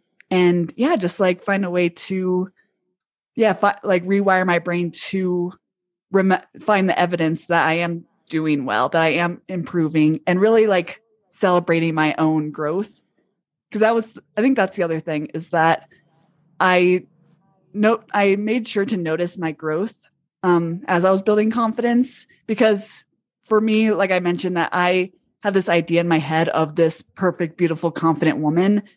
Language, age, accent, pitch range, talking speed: English, 20-39, American, 160-195 Hz, 165 wpm